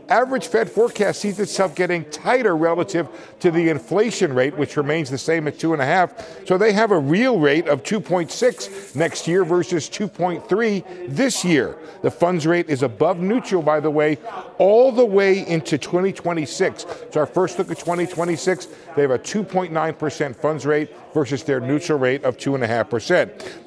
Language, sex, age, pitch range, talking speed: English, male, 50-69, 140-175 Hz, 160 wpm